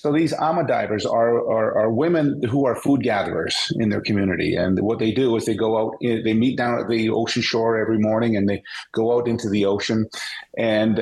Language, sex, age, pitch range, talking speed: English, male, 40-59, 110-135 Hz, 210 wpm